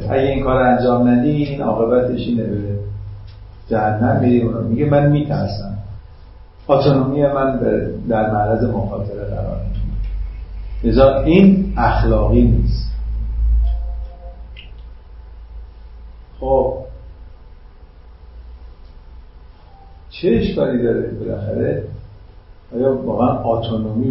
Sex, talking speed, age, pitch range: male, 75 wpm, 50-69, 95-140 Hz